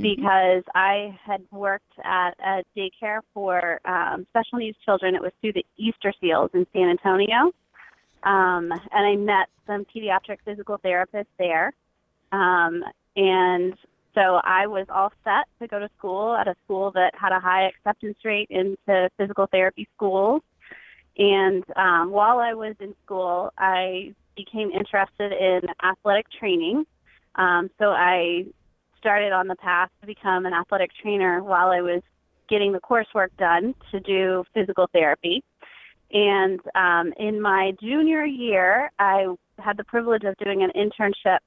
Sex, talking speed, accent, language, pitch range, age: female, 150 wpm, American, English, 185-205 Hz, 20-39